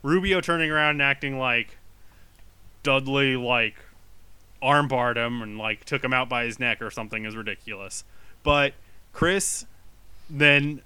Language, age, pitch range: English, 20-39, 100-135 Hz